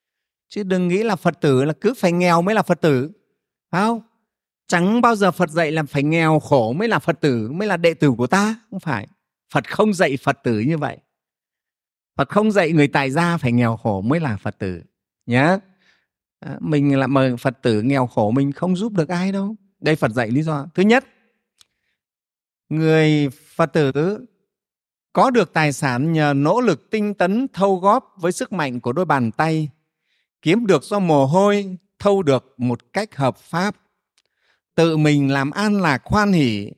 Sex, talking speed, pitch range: male, 190 wpm, 135-190 Hz